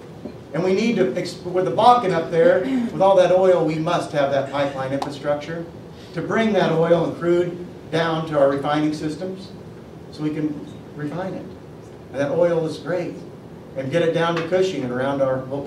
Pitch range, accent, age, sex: 150-190 Hz, American, 50-69, male